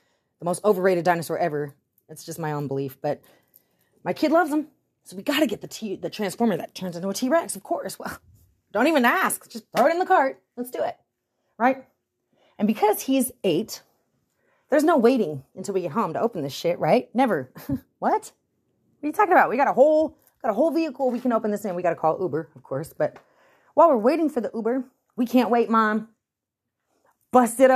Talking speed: 220 wpm